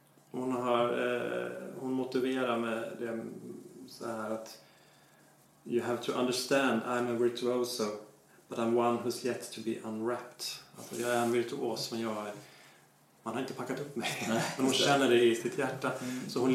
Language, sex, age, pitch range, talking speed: English, male, 30-49, 115-140 Hz, 180 wpm